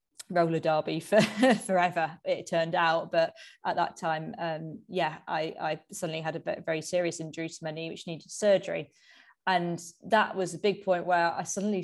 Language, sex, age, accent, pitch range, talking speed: English, female, 20-39, British, 165-190 Hz, 180 wpm